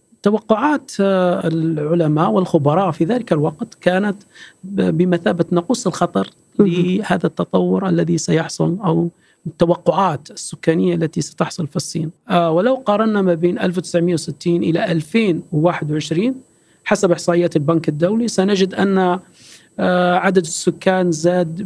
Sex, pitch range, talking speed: male, 165-185 Hz, 105 wpm